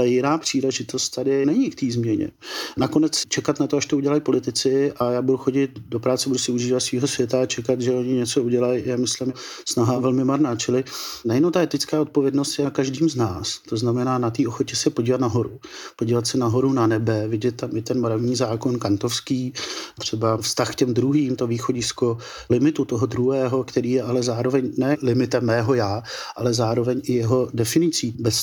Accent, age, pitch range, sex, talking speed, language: native, 50-69, 120-135 Hz, male, 195 wpm, Czech